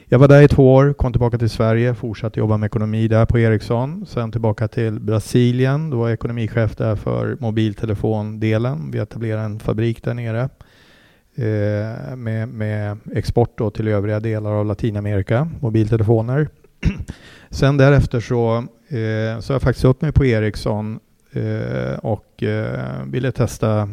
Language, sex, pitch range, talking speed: English, male, 105-125 Hz, 145 wpm